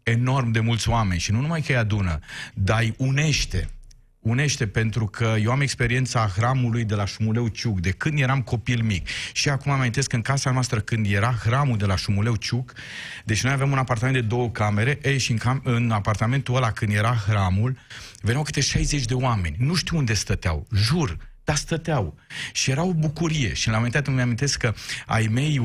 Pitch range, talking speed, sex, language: 115-140 Hz, 195 wpm, male, Romanian